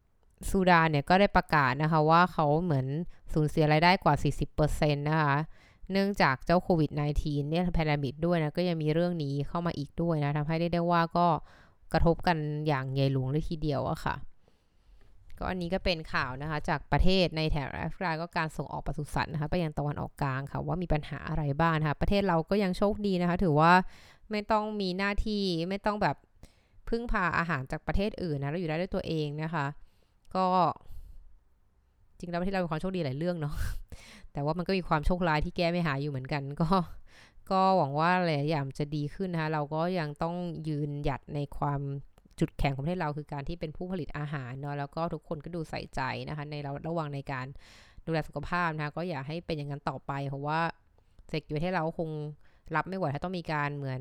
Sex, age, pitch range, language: female, 20-39, 145-175 Hz, Thai